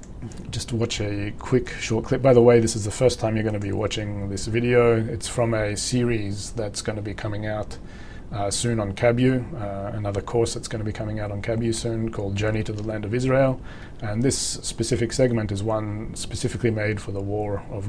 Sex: male